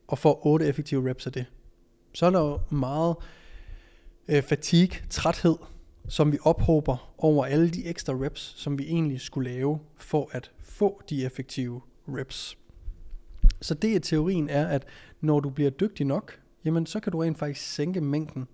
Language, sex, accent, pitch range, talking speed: Danish, male, native, 130-160 Hz, 170 wpm